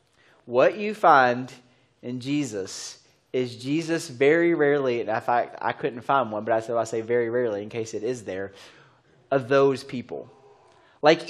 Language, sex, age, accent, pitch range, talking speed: English, male, 30-49, American, 130-195 Hz, 165 wpm